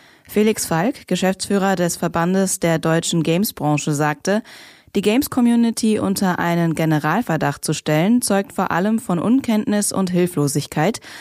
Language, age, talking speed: German, 20-39, 125 wpm